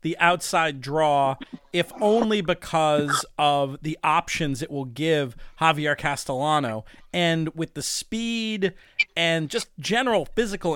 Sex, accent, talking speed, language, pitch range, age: male, American, 125 wpm, English, 145-180 Hz, 40-59